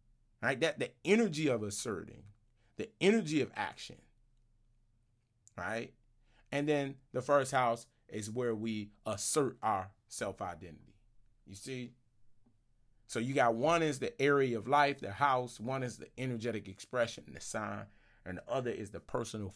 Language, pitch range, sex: English, 110-125 Hz, male